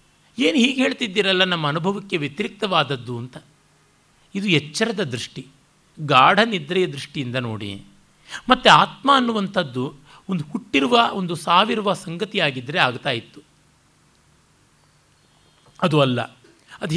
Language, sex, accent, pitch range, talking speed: Kannada, male, native, 140-190 Hz, 100 wpm